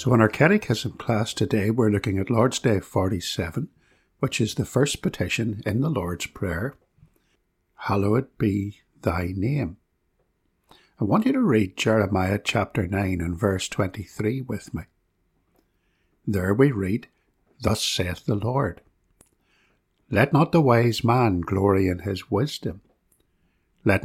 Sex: male